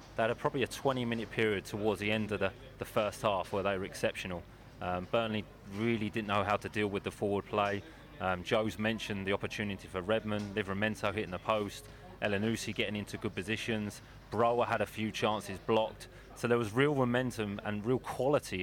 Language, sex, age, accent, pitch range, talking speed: English, male, 30-49, British, 100-120 Hz, 200 wpm